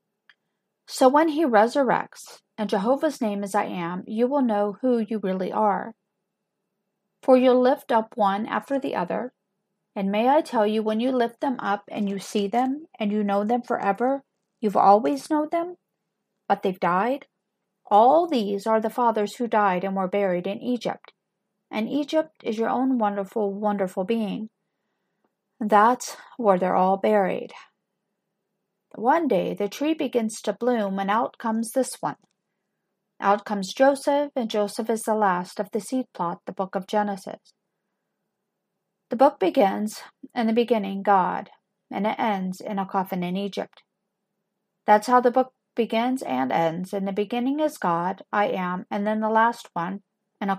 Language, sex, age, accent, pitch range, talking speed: English, female, 40-59, American, 195-240 Hz, 165 wpm